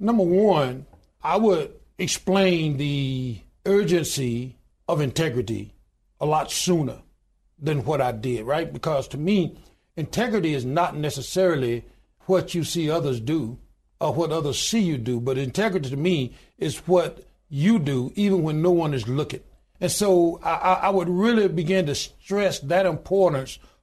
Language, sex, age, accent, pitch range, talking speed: English, male, 60-79, American, 140-185 Hz, 150 wpm